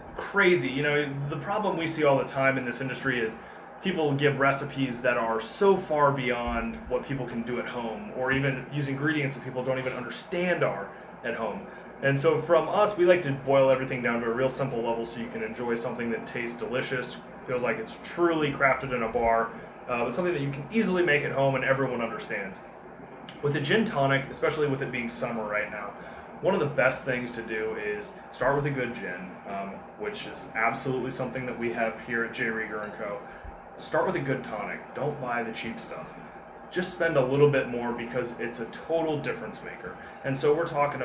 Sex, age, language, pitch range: male, 20-39, English, 115-140 Hz